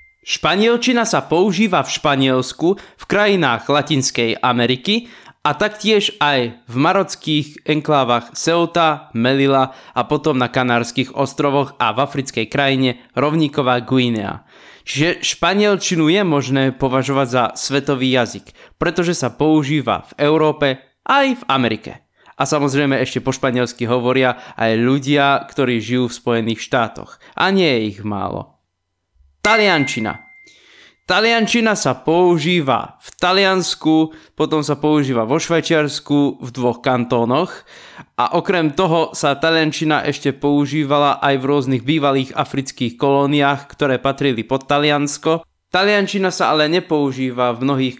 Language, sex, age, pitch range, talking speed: Slovak, male, 20-39, 125-165 Hz, 125 wpm